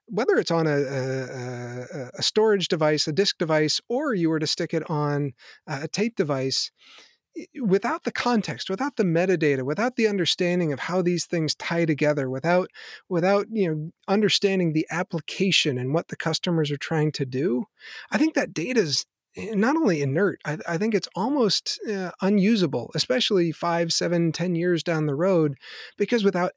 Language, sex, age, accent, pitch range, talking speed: English, male, 30-49, American, 145-185 Hz, 170 wpm